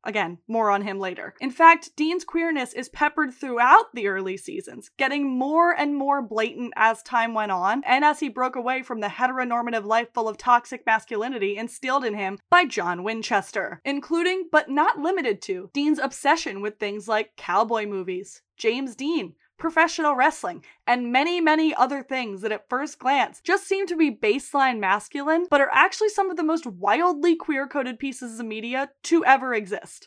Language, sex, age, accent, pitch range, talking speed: English, female, 10-29, American, 230-305 Hz, 180 wpm